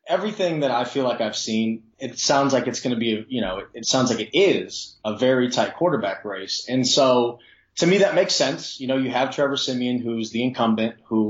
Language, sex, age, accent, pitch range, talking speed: English, male, 20-39, American, 115-130 Hz, 235 wpm